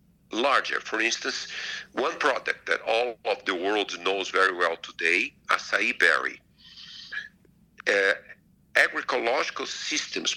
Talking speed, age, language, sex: 110 wpm, 50-69, English, male